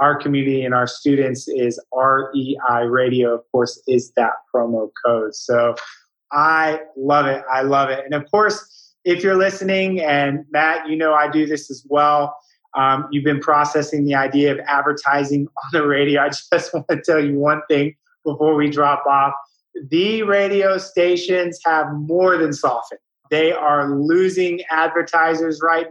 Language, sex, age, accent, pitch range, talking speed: English, male, 20-39, American, 145-175 Hz, 165 wpm